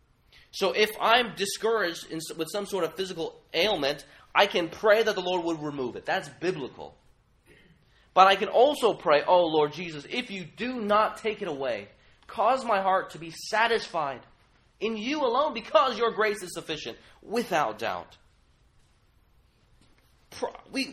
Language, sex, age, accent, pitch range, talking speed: English, male, 30-49, American, 145-210 Hz, 150 wpm